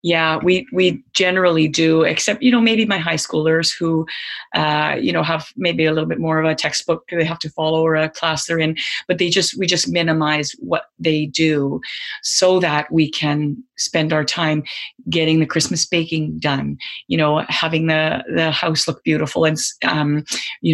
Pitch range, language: 155-180 Hz, English